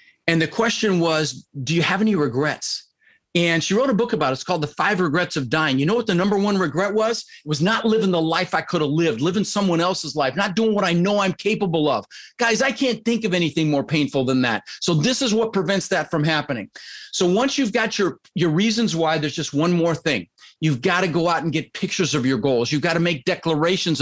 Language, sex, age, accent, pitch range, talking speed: English, male, 40-59, American, 150-195 Hz, 250 wpm